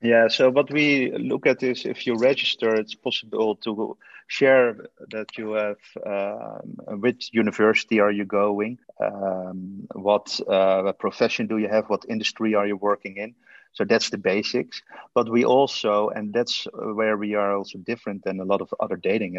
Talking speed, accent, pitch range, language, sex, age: 175 wpm, Dutch, 95-115 Hz, English, male, 30-49